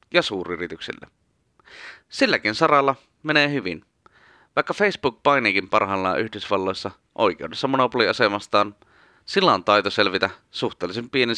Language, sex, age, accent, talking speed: Finnish, male, 30-49, native, 100 wpm